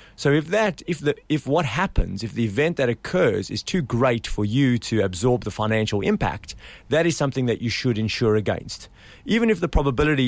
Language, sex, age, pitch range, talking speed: English, male, 30-49, 115-145 Hz, 205 wpm